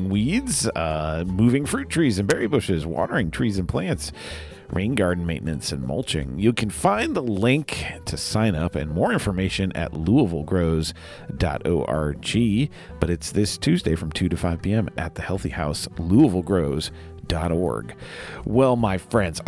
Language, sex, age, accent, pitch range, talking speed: English, male, 40-59, American, 85-120 Hz, 150 wpm